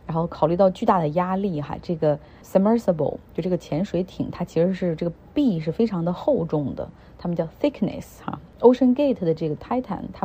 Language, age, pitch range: Chinese, 30-49, 165-210 Hz